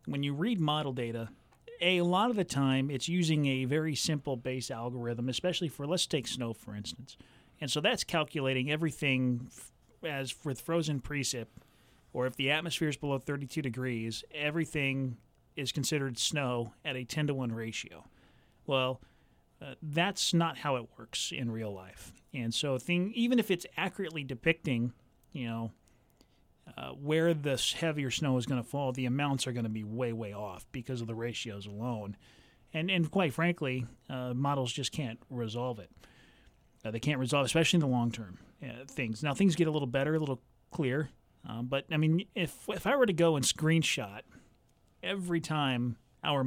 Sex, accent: male, American